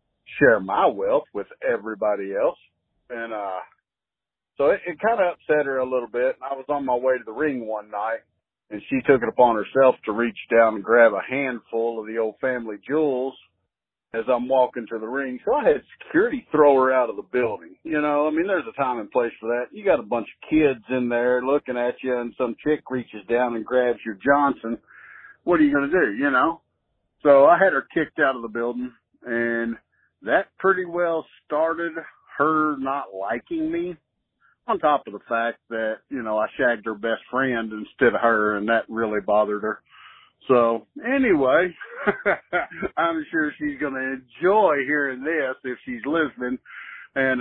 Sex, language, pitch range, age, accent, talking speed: male, English, 115-150 Hz, 50-69, American, 195 wpm